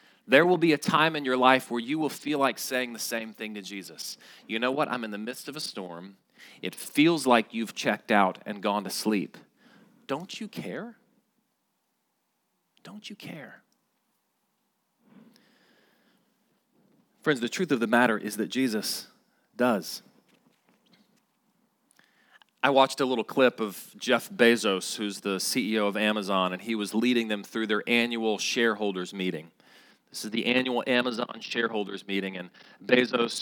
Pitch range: 105-155 Hz